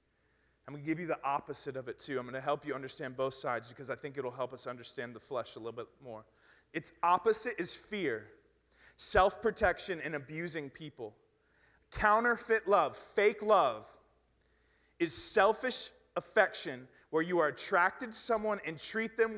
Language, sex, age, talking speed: English, male, 30-49, 175 wpm